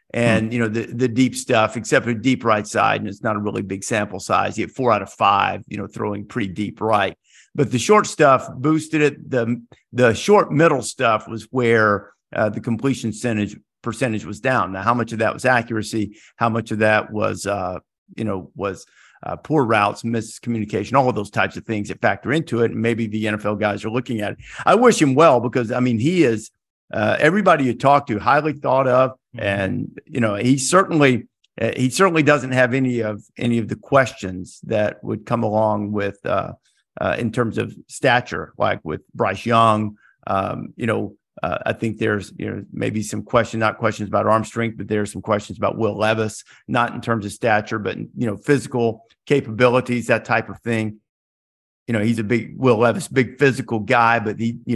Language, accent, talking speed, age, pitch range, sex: English, American, 210 wpm, 50-69, 105-125 Hz, male